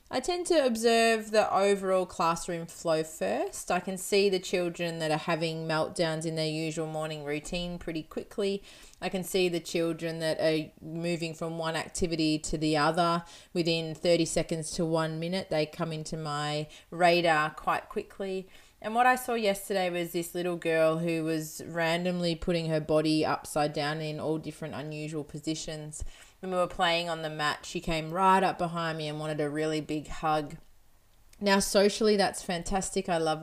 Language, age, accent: English, 20-39, Australian